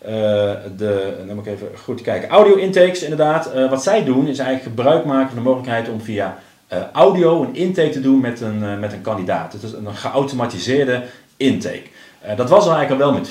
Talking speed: 215 wpm